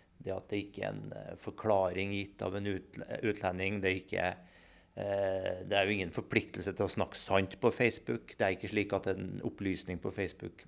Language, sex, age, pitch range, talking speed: English, male, 30-49, 100-125 Hz, 190 wpm